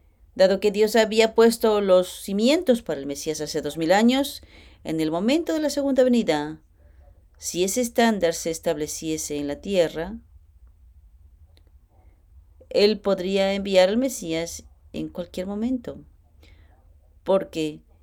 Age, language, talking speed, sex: 40-59, English, 125 wpm, female